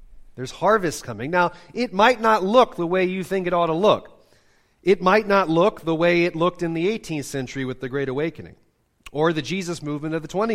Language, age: English, 40-59